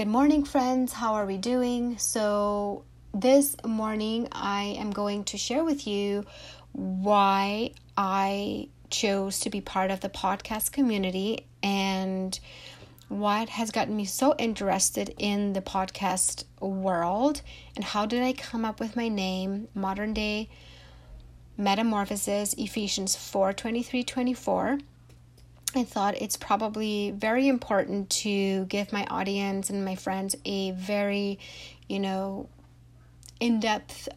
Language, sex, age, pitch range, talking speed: English, female, 30-49, 190-220 Hz, 125 wpm